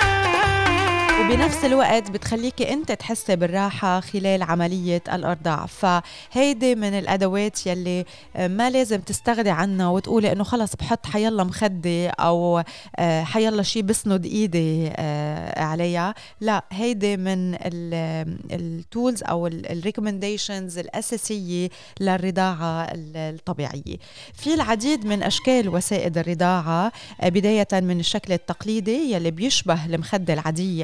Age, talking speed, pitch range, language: 20-39, 100 wpm, 175-220 Hz, Arabic